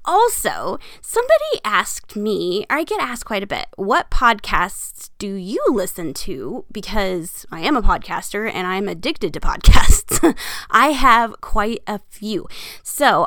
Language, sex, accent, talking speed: English, female, American, 150 wpm